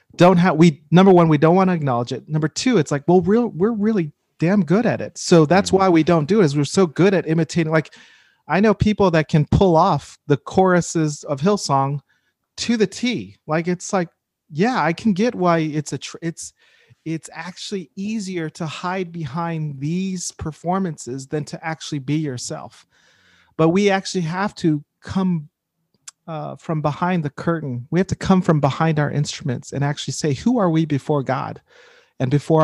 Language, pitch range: English, 145-180 Hz